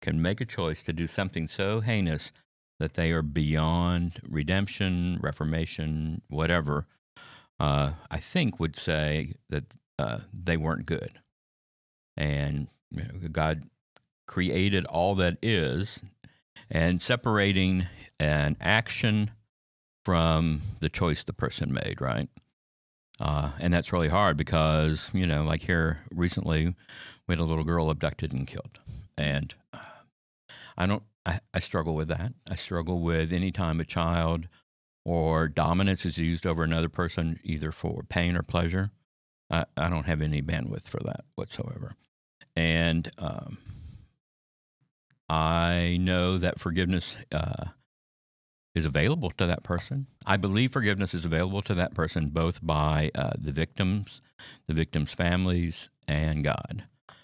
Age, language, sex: 60-79, English, male